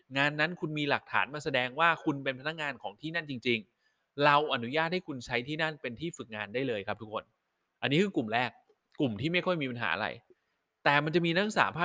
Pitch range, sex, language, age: 120-170 Hz, male, Thai, 20-39